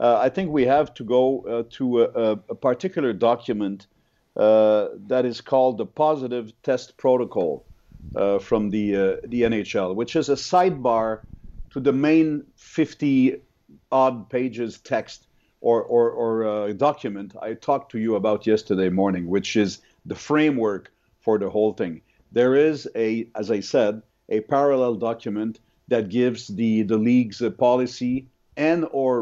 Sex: male